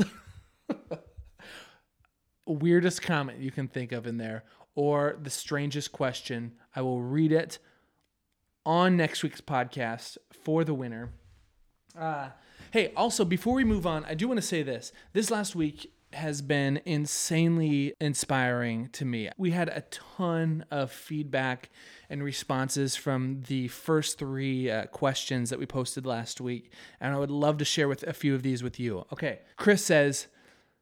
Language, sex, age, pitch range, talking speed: English, male, 20-39, 130-160 Hz, 155 wpm